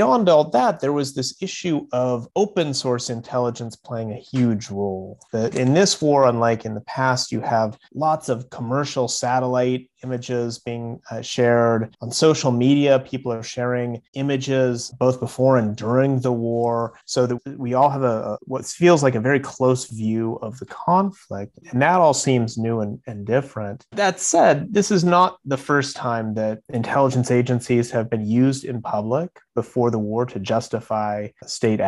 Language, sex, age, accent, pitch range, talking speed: English, male, 30-49, American, 115-135 Hz, 175 wpm